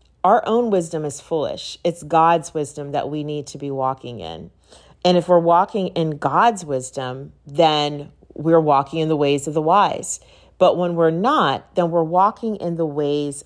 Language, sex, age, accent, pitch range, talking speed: English, female, 40-59, American, 145-200 Hz, 185 wpm